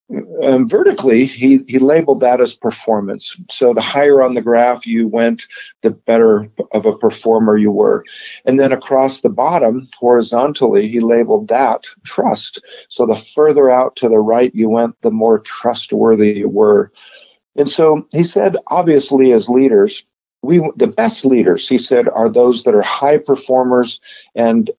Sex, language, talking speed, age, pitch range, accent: male, English, 160 wpm, 50-69, 115-150 Hz, American